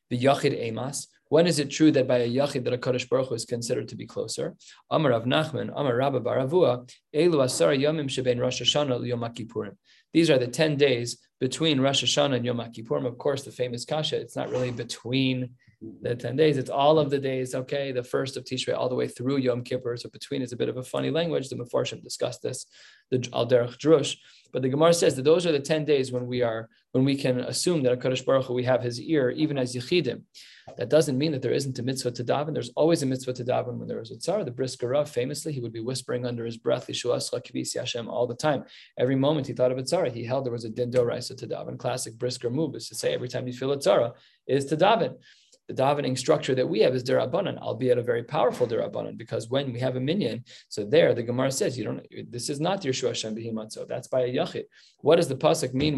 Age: 20-39